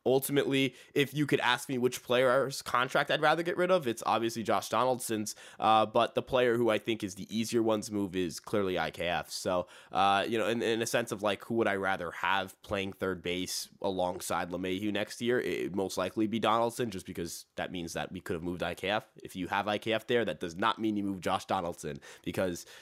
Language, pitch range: English, 105-140 Hz